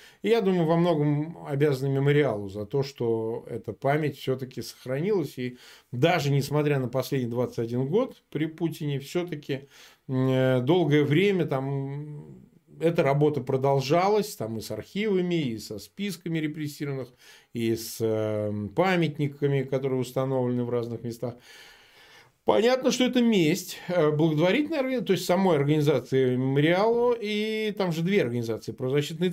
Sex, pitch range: male, 120-160 Hz